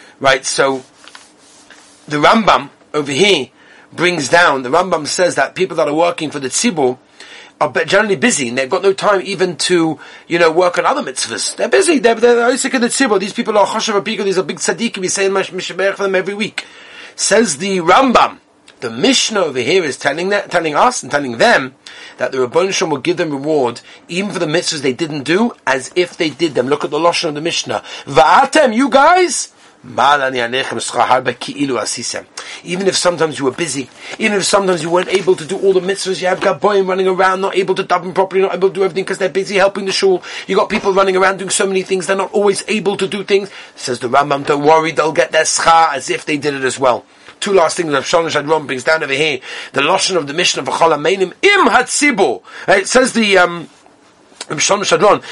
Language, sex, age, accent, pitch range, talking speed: English, male, 30-49, British, 160-205 Hz, 220 wpm